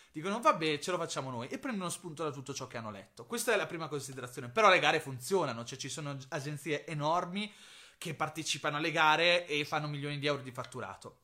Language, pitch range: Italian, 140-185 Hz